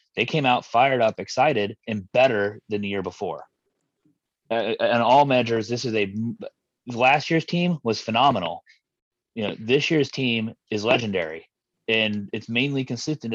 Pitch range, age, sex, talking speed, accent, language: 100-120 Hz, 30-49, male, 160 wpm, American, English